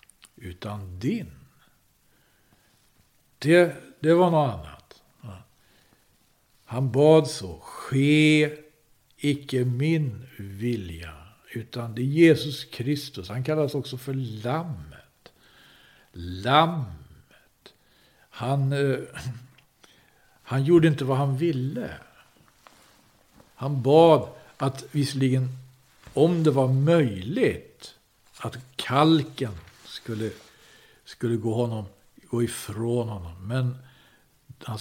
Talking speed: 90 wpm